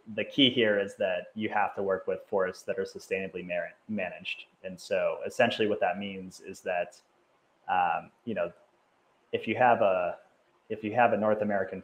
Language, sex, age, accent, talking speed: English, male, 30-49, American, 180 wpm